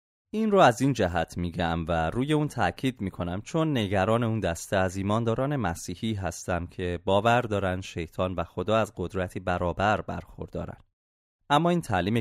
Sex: male